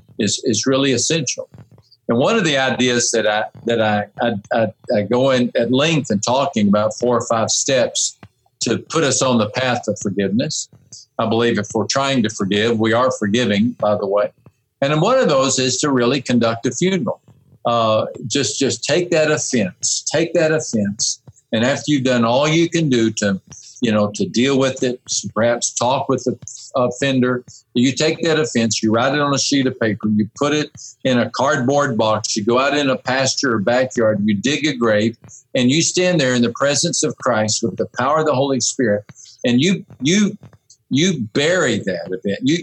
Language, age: English, 50-69